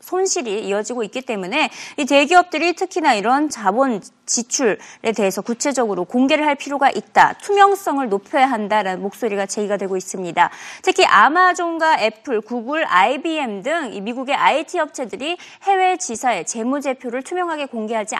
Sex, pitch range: female, 215-325 Hz